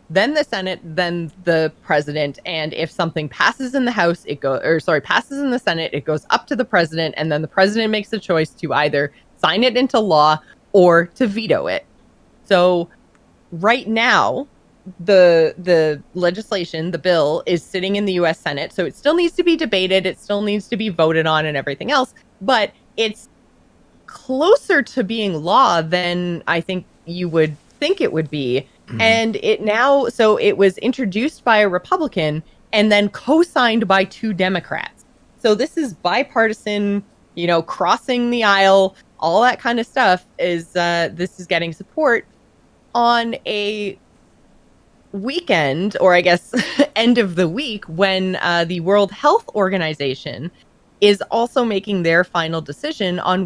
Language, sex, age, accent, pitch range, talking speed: English, female, 20-39, American, 170-225 Hz, 165 wpm